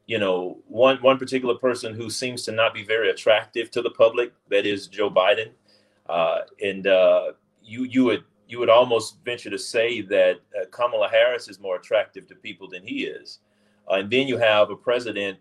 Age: 30-49